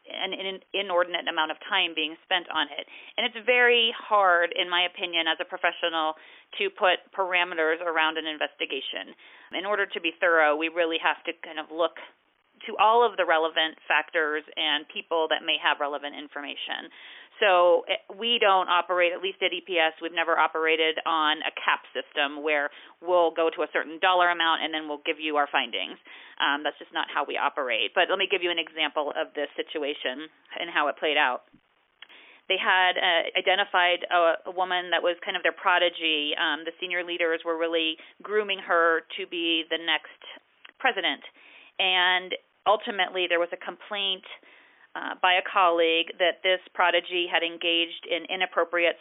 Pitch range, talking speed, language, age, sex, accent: 165-195 Hz, 180 wpm, English, 40-59, female, American